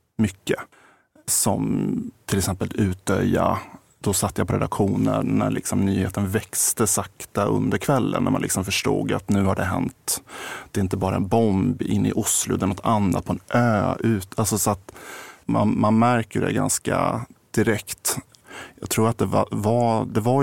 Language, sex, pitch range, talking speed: Swedish, male, 100-120 Hz, 175 wpm